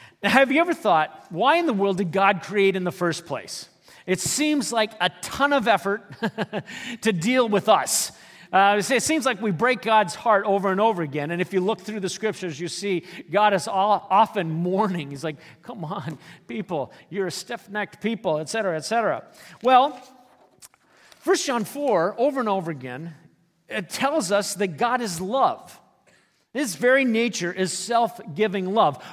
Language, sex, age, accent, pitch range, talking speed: English, male, 40-59, American, 180-250 Hz, 180 wpm